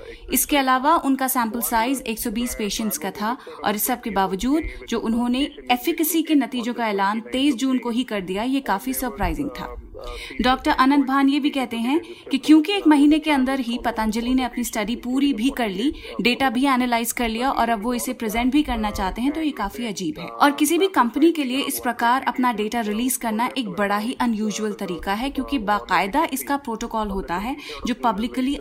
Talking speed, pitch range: 115 wpm, 220-275 Hz